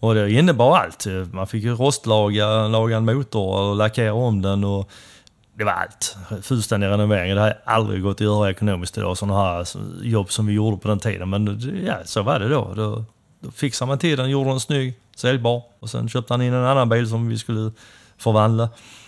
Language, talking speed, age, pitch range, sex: English, 210 wpm, 30-49, 100-120 Hz, male